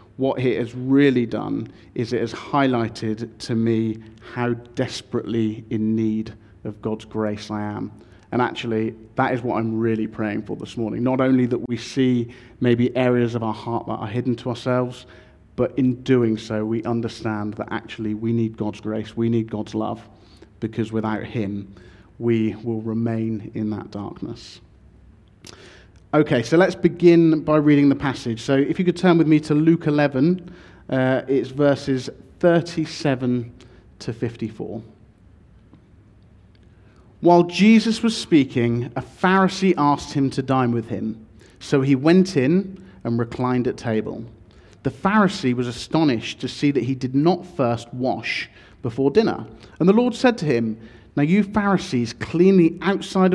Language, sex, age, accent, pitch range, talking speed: English, male, 30-49, British, 110-140 Hz, 160 wpm